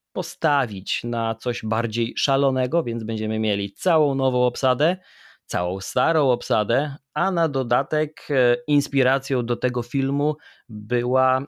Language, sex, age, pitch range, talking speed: Polish, male, 30-49, 110-135 Hz, 115 wpm